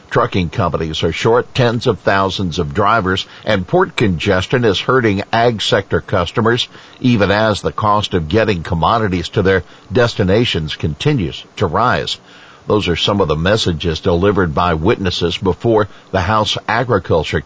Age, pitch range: 60-79, 90-115 Hz